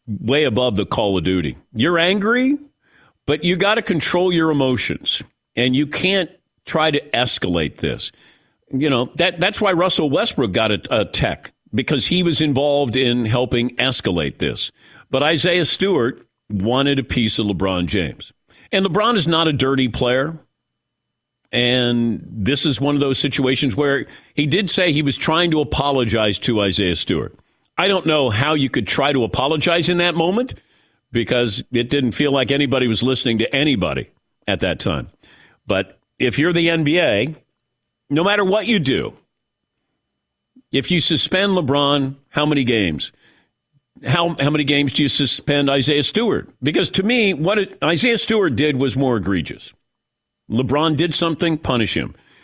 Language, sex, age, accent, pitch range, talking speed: English, male, 50-69, American, 120-165 Hz, 165 wpm